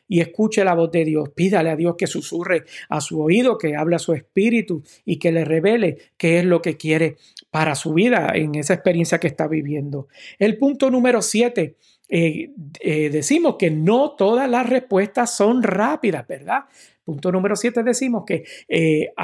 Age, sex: 50-69, male